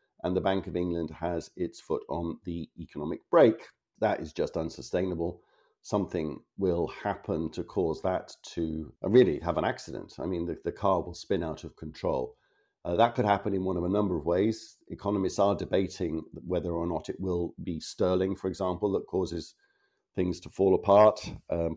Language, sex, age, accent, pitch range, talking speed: English, male, 50-69, British, 85-110 Hz, 185 wpm